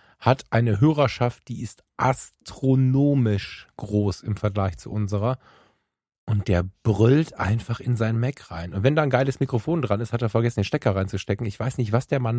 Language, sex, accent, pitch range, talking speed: German, male, German, 115-155 Hz, 190 wpm